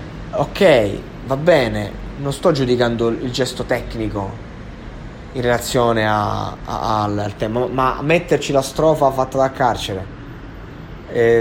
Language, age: Italian, 20-39